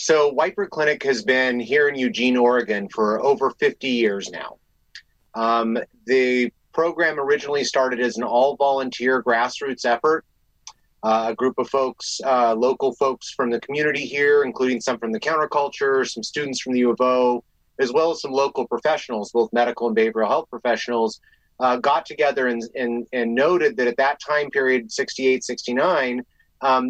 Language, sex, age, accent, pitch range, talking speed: English, male, 30-49, American, 120-140 Hz, 165 wpm